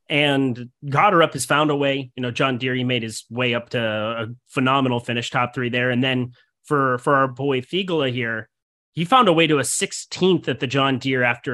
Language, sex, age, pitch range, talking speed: English, male, 30-49, 125-160 Hz, 230 wpm